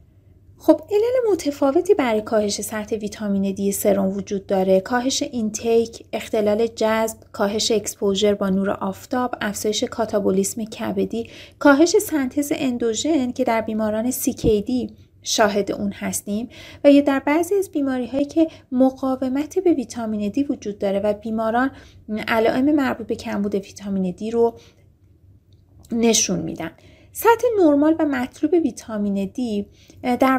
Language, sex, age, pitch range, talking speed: Persian, female, 30-49, 210-275 Hz, 125 wpm